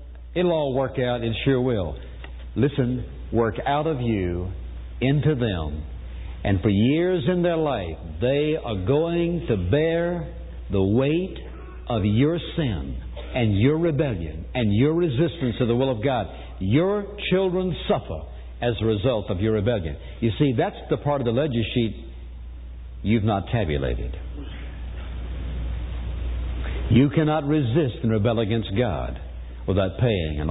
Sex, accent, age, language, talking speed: male, American, 60-79, English, 140 wpm